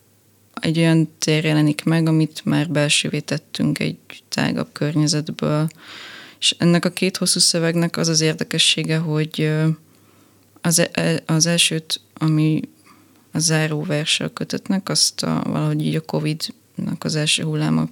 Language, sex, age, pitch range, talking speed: Hungarian, female, 20-39, 150-165 Hz, 125 wpm